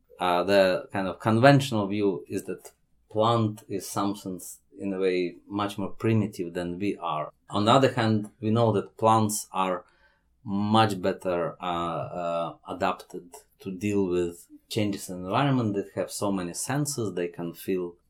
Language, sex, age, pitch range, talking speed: English, male, 30-49, 90-110 Hz, 160 wpm